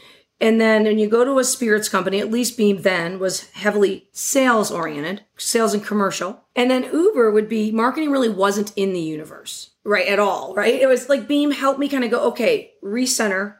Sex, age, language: female, 40-59, English